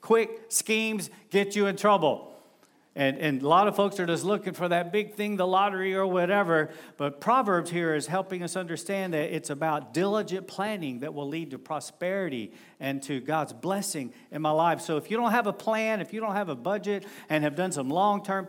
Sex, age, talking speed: male, 50-69, 210 wpm